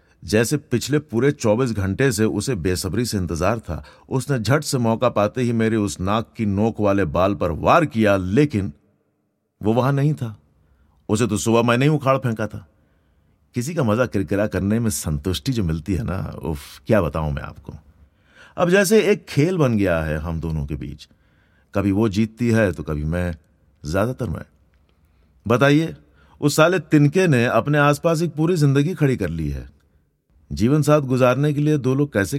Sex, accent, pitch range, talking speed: male, native, 85-135 Hz, 180 wpm